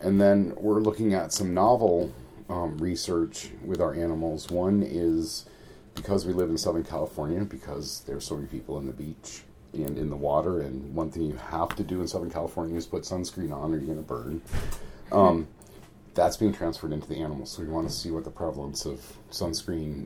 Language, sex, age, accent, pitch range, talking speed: English, male, 40-59, American, 75-95 Hz, 205 wpm